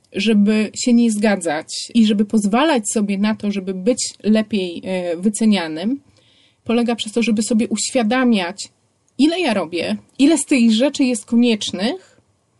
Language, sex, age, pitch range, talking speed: Polish, female, 30-49, 215-255 Hz, 140 wpm